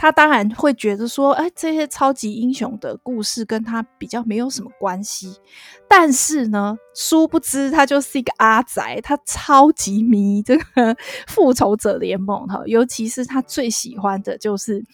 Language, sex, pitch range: Chinese, female, 210-265 Hz